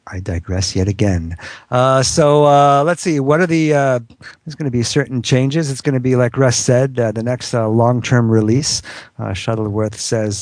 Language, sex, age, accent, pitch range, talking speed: English, male, 50-69, American, 110-140 Hz, 200 wpm